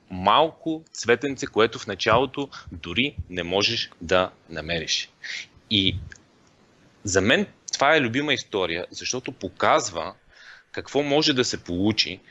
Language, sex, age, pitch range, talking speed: Bulgarian, male, 30-49, 95-125 Hz, 115 wpm